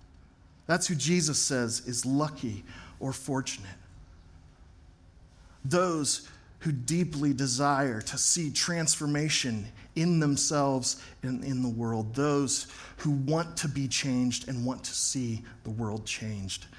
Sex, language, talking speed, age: male, English, 120 wpm, 40-59